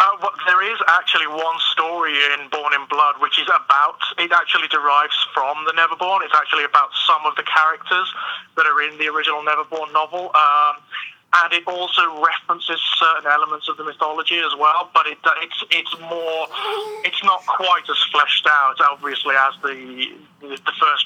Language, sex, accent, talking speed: English, male, British, 175 wpm